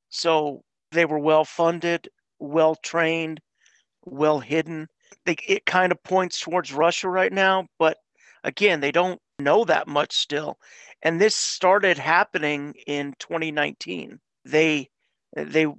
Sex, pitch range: male, 145-170 Hz